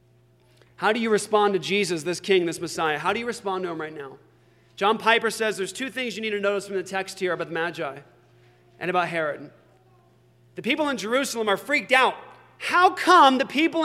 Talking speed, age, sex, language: 210 wpm, 30-49, male, English